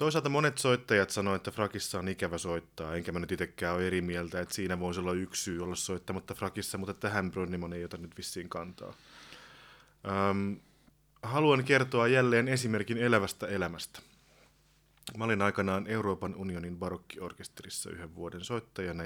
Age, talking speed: 30-49, 155 wpm